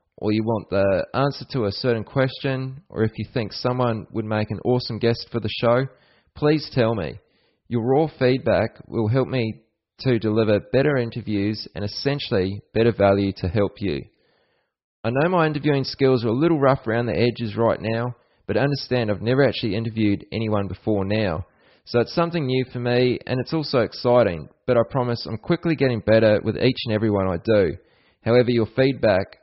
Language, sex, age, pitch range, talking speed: Persian, male, 20-39, 110-130 Hz, 190 wpm